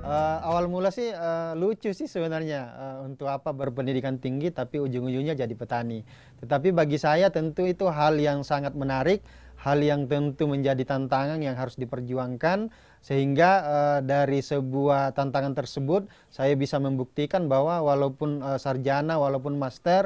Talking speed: 145 wpm